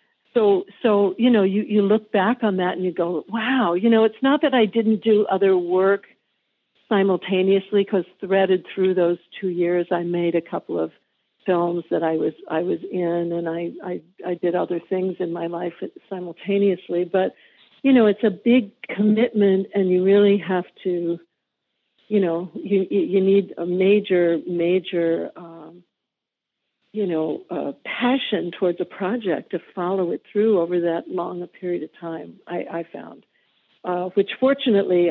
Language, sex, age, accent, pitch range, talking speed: English, female, 50-69, American, 175-205 Hz, 170 wpm